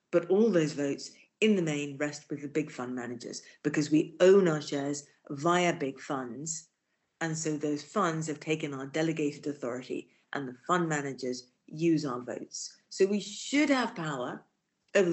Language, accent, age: English, British, 50-69